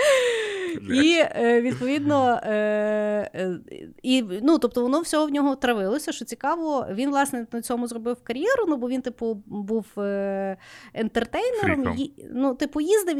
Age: 30-49